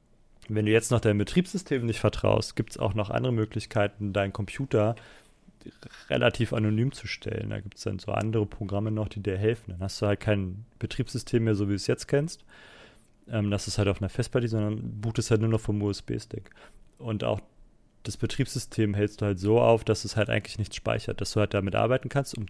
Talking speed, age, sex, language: 210 wpm, 30-49, male, German